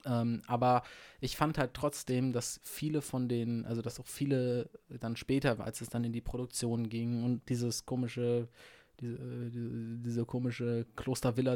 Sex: male